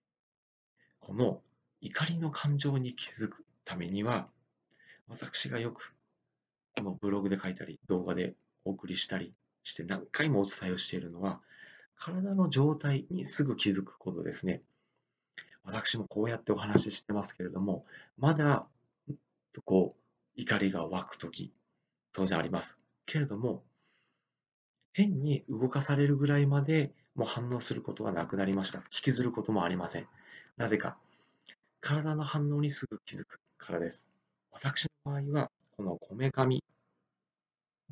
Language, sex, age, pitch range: Japanese, male, 40-59, 95-140 Hz